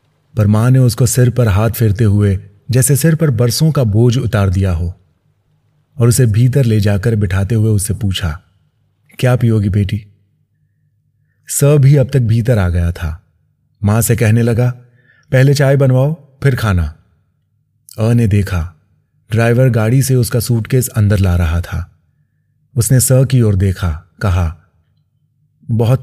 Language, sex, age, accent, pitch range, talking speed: Hindi, male, 30-49, native, 100-130 Hz, 150 wpm